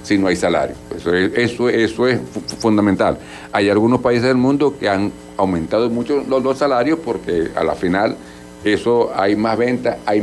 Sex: male